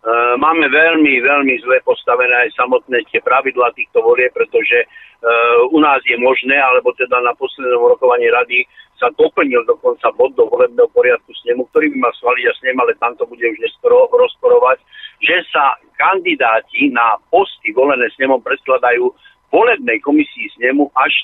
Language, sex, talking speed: Slovak, male, 155 wpm